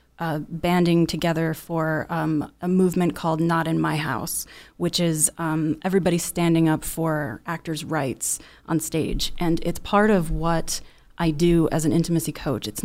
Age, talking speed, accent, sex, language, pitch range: 30-49, 165 wpm, American, female, English, 160-185 Hz